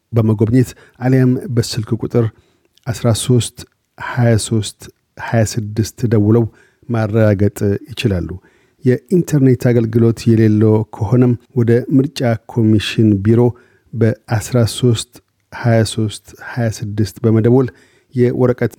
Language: Amharic